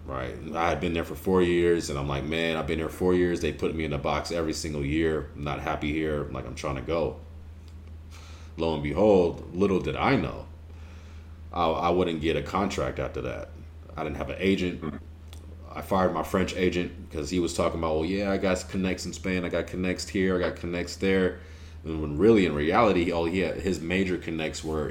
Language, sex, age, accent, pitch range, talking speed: English, male, 30-49, American, 75-90 Hz, 225 wpm